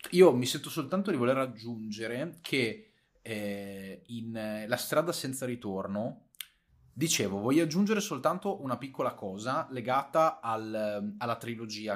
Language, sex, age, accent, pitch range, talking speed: Italian, male, 30-49, native, 110-140 Hz, 120 wpm